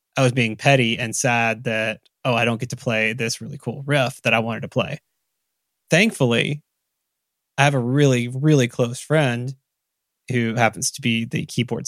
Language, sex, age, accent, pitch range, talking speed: English, male, 20-39, American, 115-135 Hz, 180 wpm